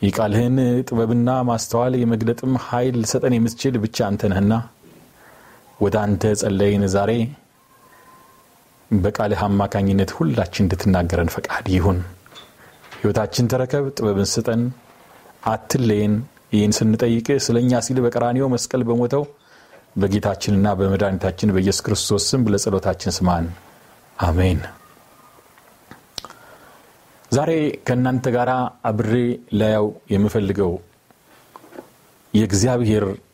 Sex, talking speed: male, 80 wpm